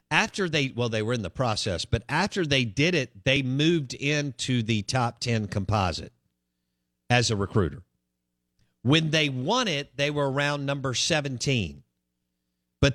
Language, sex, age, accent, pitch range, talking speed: English, male, 50-69, American, 90-130 Hz, 155 wpm